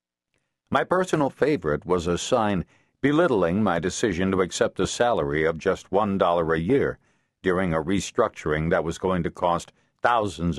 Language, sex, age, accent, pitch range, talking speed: English, male, 60-79, American, 70-115 Hz, 160 wpm